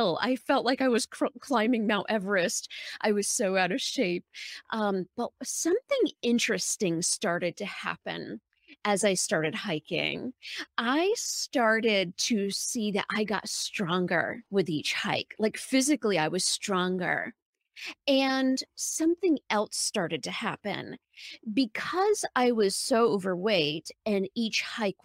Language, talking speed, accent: English, 130 wpm, American